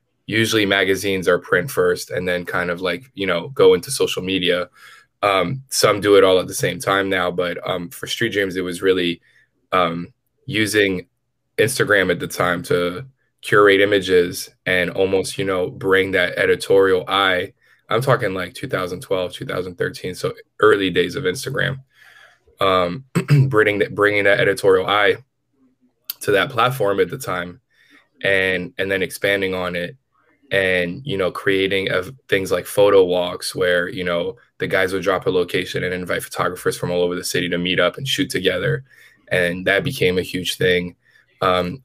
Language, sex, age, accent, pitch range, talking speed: English, male, 10-29, American, 90-135 Hz, 170 wpm